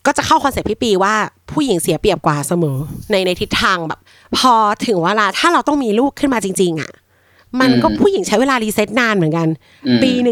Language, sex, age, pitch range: Thai, female, 30-49, 165-235 Hz